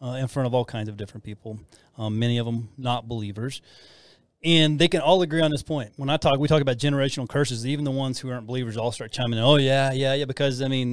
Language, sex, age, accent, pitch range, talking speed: English, male, 30-49, American, 120-150 Hz, 265 wpm